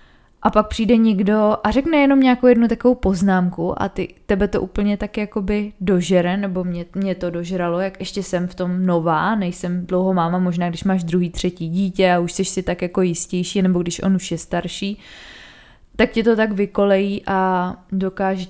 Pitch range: 180-210 Hz